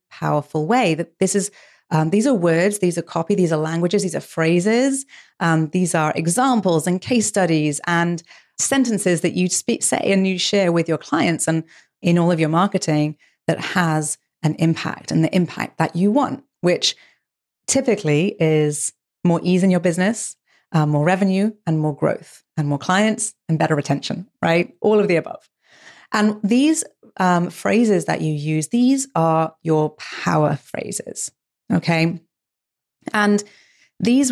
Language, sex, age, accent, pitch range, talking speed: English, female, 30-49, British, 160-205 Hz, 165 wpm